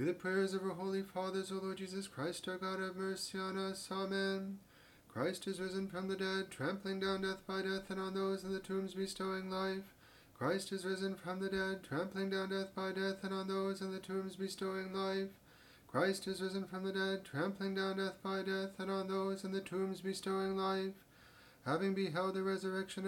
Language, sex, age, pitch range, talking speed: English, male, 30-49, 190-195 Hz, 205 wpm